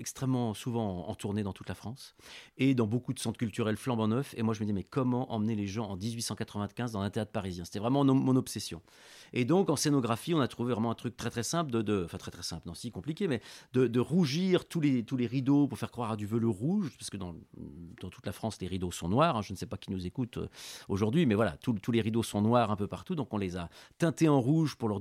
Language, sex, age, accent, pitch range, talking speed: French, male, 40-59, French, 105-135 Hz, 275 wpm